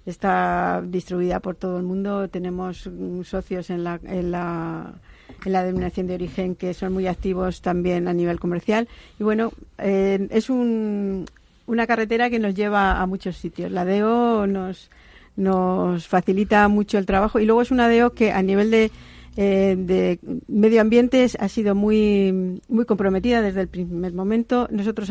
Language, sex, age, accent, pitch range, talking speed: Spanish, female, 50-69, Spanish, 185-205 Hz, 165 wpm